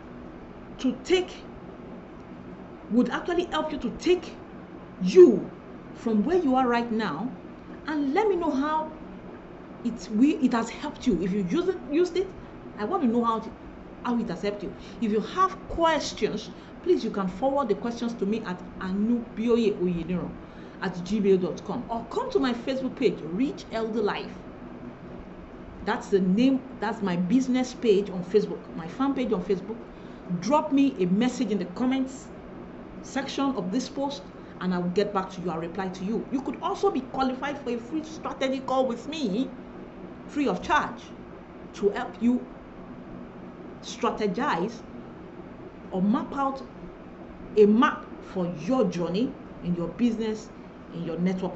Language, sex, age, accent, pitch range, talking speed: English, female, 40-59, Nigerian, 185-265 Hz, 155 wpm